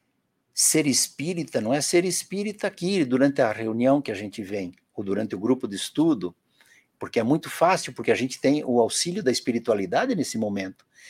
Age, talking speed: 60-79, 185 wpm